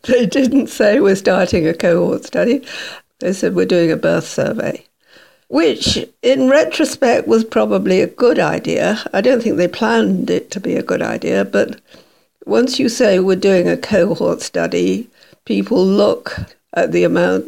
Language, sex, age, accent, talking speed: English, female, 60-79, British, 165 wpm